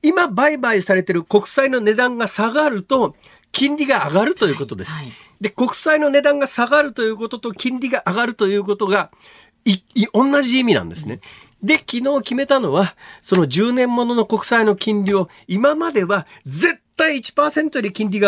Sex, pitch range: male, 150-235 Hz